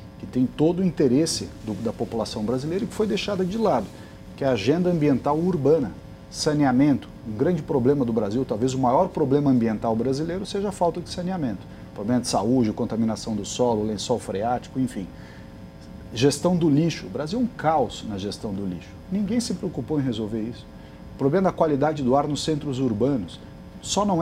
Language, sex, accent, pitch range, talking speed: Portuguese, male, Brazilian, 110-155 Hz, 185 wpm